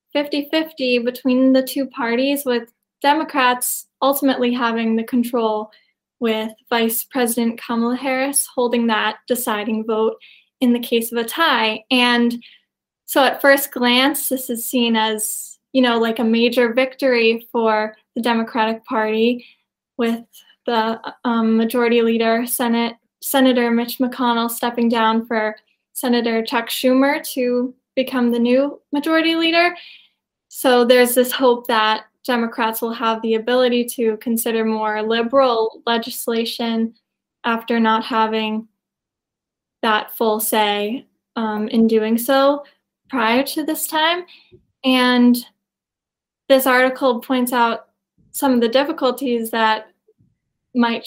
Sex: female